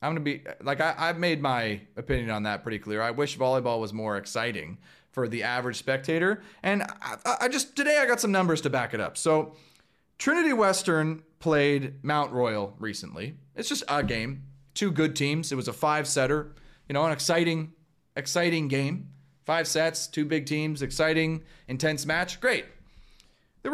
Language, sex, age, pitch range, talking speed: English, male, 30-49, 140-185 Hz, 180 wpm